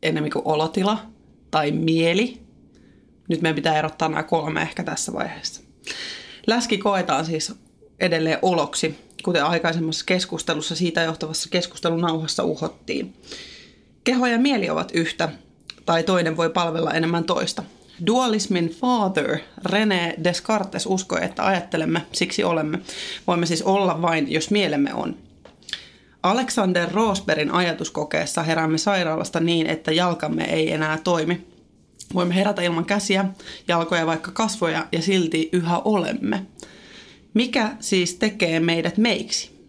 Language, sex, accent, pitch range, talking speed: Finnish, female, native, 160-205 Hz, 120 wpm